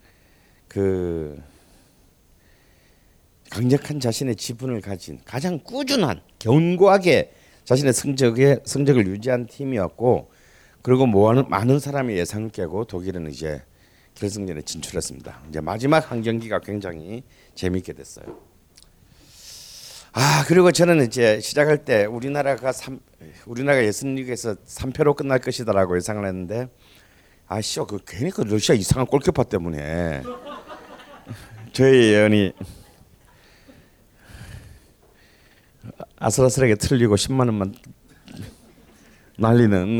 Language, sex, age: Korean, male, 40-59